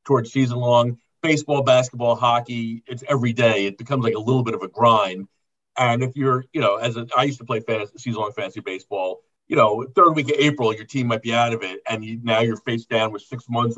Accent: American